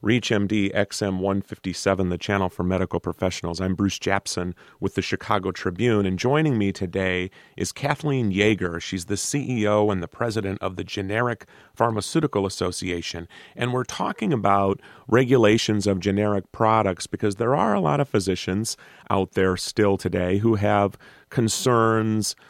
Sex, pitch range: male, 95-110 Hz